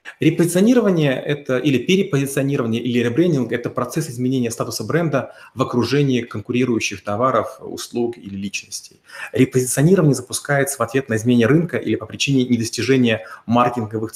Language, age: Russian, 30-49